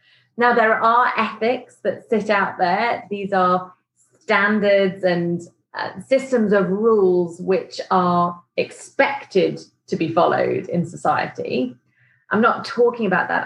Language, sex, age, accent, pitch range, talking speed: English, female, 30-49, British, 175-215 Hz, 130 wpm